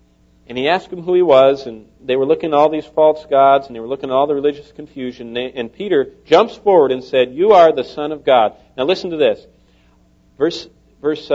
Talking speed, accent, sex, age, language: 235 wpm, American, male, 50-69, English